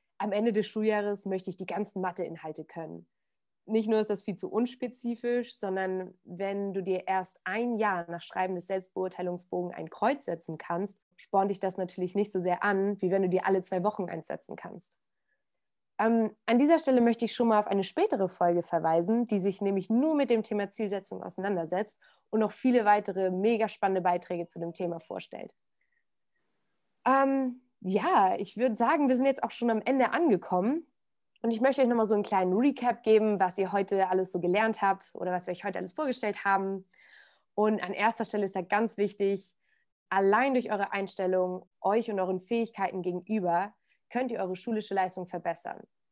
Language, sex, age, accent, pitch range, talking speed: German, female, 20-39, German, 185-220 Hz, 185 wpm